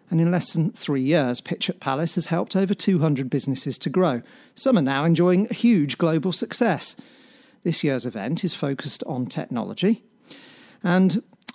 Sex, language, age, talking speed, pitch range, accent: male, English, 40-59, 160 wpm, 145-205 Hz, British